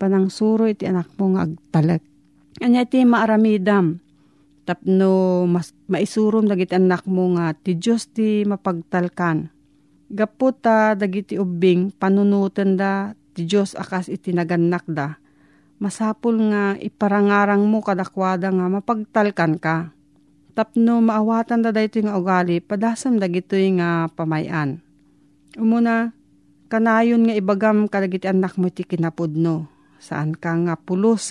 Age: 40-59